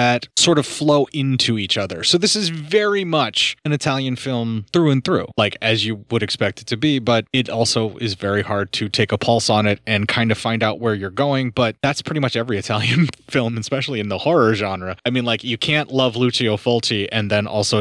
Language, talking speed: English, 230 wpm